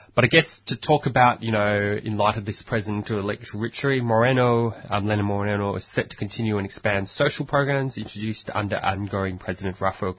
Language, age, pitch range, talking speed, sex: English, 20-39, 95-115 Hz, 190 wpm, male